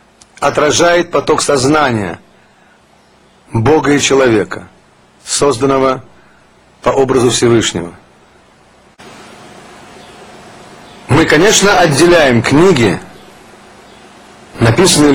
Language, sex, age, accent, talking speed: Russian, male, 40-59, native, 60 wpm